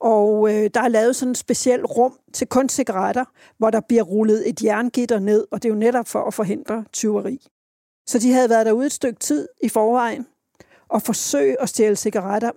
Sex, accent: female, native